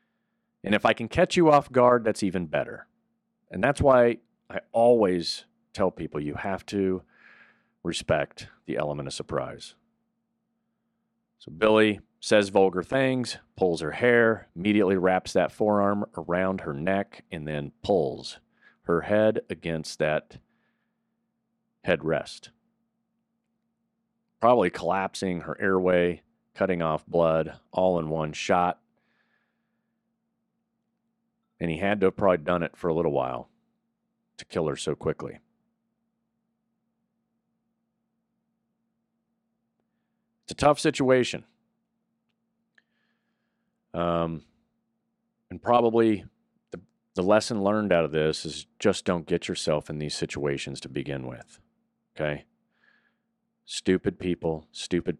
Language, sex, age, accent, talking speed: English, male, 40-59, American, 115 wpm